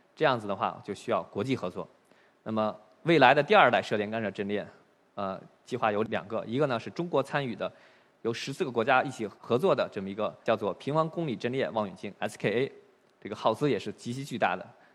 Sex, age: male, 20-39